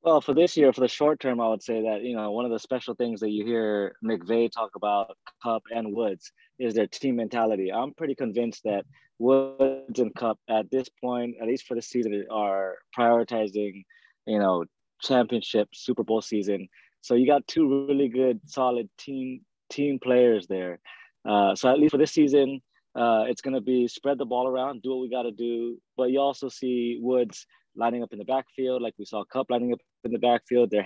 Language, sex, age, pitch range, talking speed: English, male, 20-39, 110-130 Hz, 205 wpm